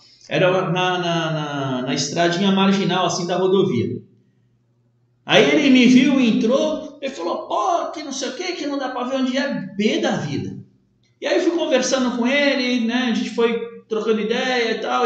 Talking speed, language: 195 wpm, Portuguese